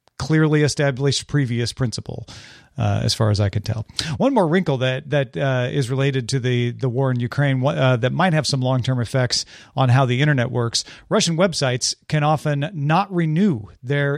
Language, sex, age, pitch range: English, male, 40-59, 125-160 Hz